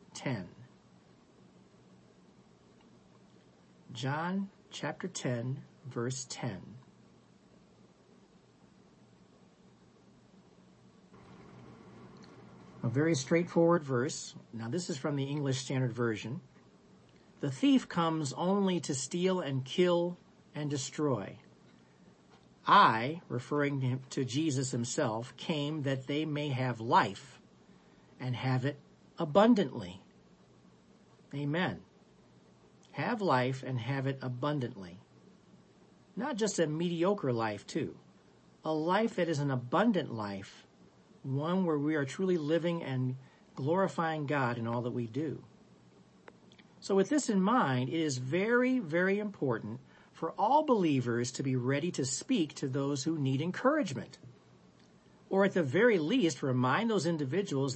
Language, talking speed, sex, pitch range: English, 115 wpm, male, 130-175 Hz